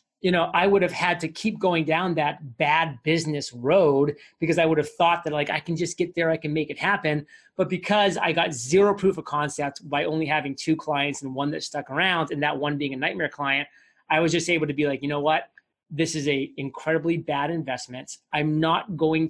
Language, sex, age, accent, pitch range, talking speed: English, male, 30-49, American, 145-170 Hz, 235 wpm